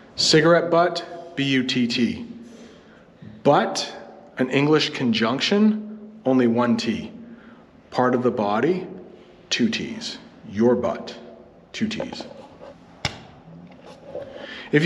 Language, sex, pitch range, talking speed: English, male, 130-205 Hz, 85 wpm